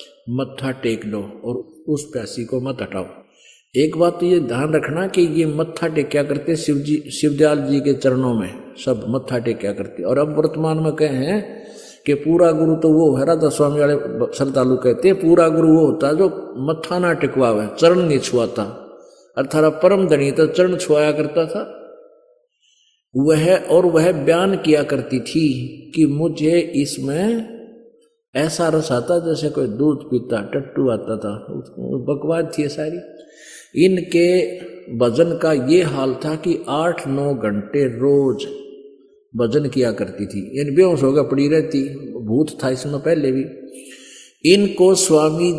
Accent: native